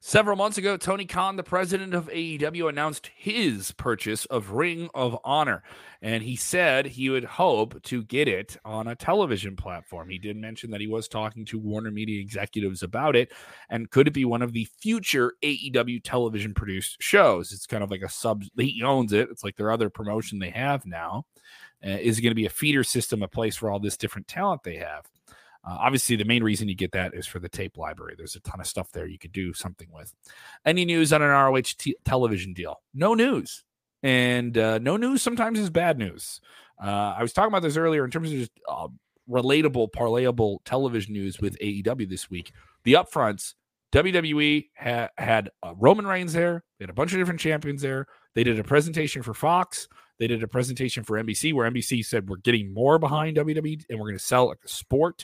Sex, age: male, 30-49